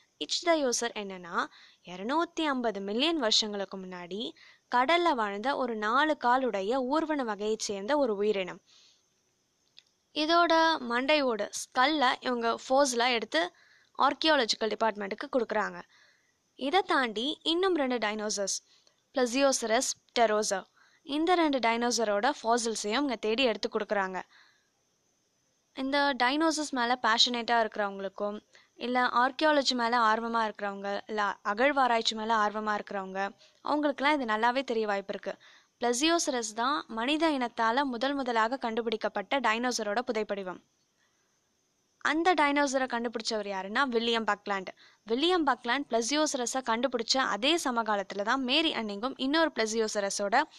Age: 20-39